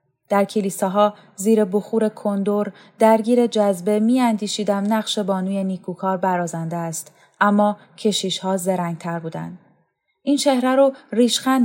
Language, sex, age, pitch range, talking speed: Persian, female, 10-29, 175-225 Hz, 125 wpm